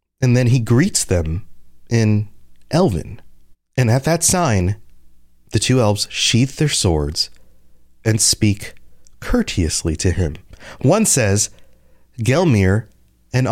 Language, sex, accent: English, male, American